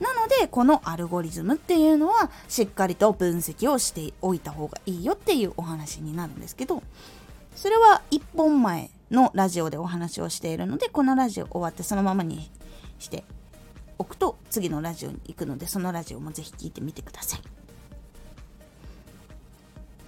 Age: 20-39